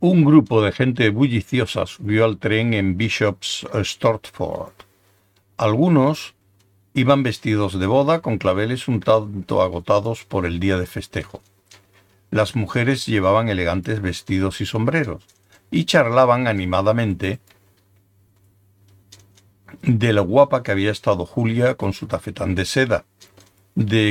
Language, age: Spanish, 60-79